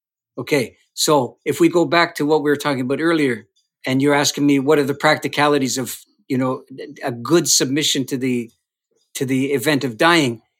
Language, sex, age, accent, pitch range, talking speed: English, male, 50-69, American, 140-170 Hz, 195 wpm